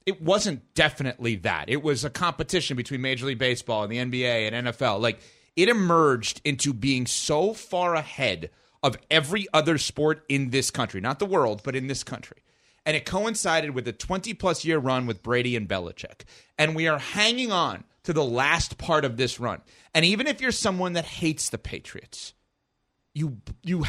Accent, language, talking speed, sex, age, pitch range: American, English, 185 wpm, male, 30-49, 140-210 Hz